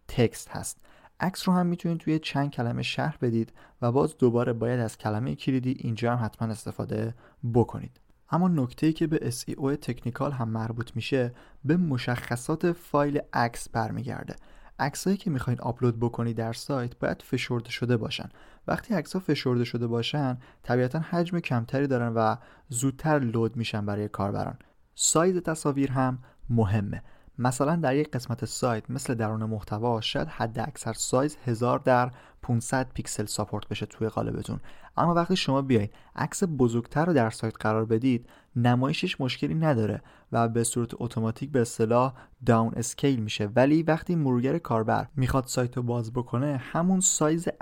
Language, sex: Persian, male